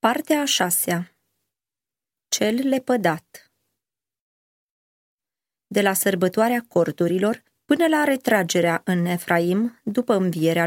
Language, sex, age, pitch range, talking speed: Romanian, female, 20-39, 170-245 Hz, 85 wpm